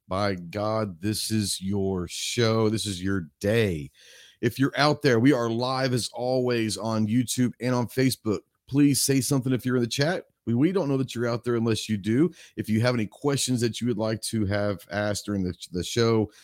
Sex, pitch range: male, 105-130 Hz